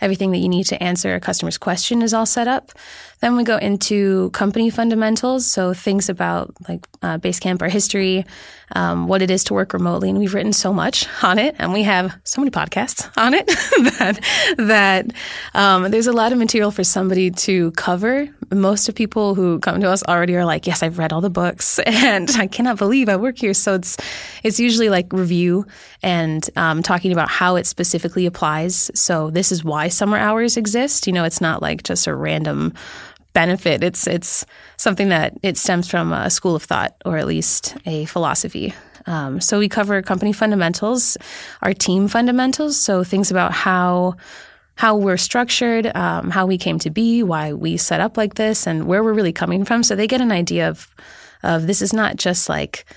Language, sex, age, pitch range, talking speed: English, female, 20-39, 175-220 Hz, 200 wpm